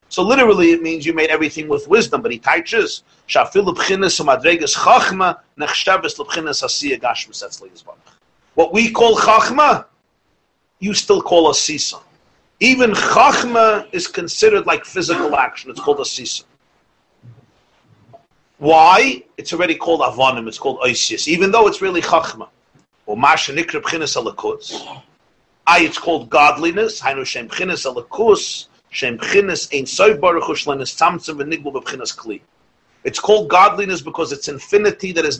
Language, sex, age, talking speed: English, male, 50-69, 125 wpm